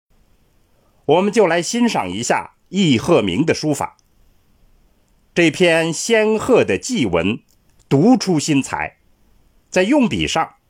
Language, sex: Chinese, male